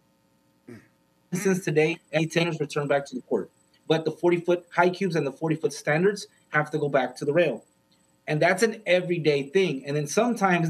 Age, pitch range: 30-49, 150-180 Hz